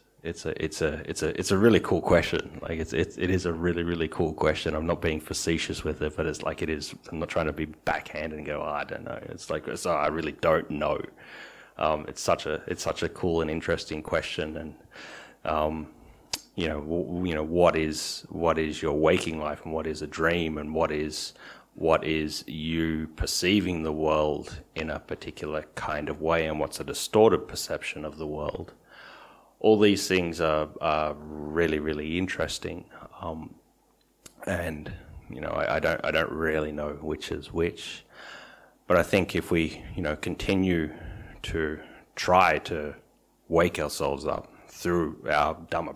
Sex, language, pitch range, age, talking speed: male, English, 75-85 Hz, 30-49, 190 wpm